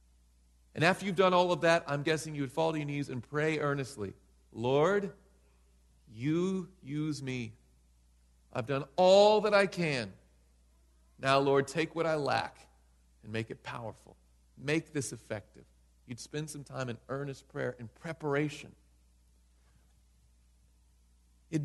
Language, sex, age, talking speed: English, male, 40-59, 140 wpm